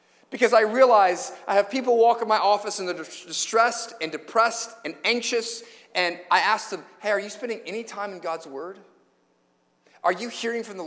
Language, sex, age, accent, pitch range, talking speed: English, male, 30-49, American, 160-225 Hz, 195 wpm